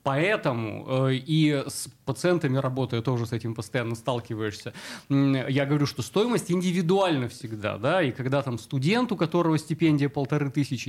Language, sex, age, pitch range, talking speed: Russian, male, 20-39, 130-165 Hz, 145 wpm